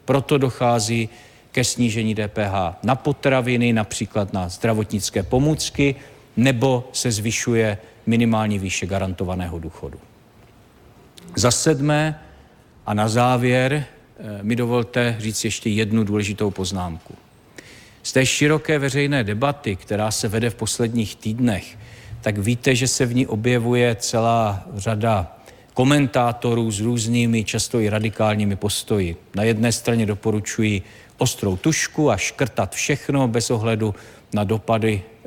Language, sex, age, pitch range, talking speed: Czech, male, 50-69, 100-125 Hz, 120 wpm